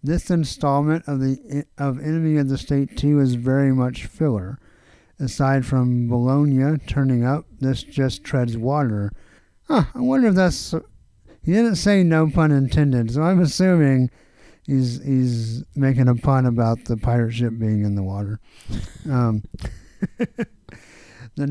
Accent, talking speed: American, 145 wpm